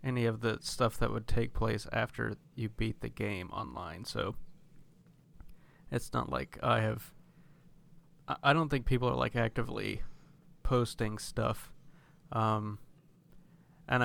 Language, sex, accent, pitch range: English, male, American, 115-155 Hz